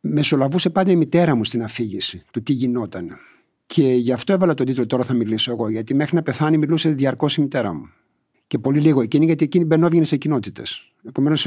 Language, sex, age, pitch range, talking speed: Greek, male, 60-79, 115-155 Hz, 200 wpm